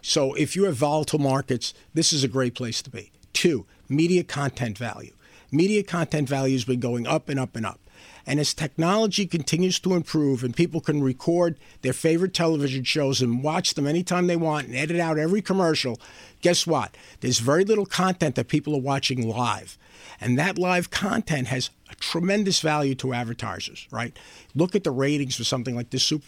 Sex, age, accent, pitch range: male, 50-69, American, 130-165 Hz